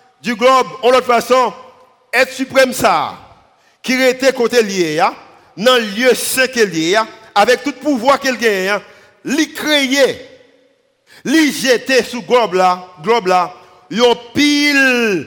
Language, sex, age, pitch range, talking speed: English, male, 50-69, 220-260 Hz, 145 wpm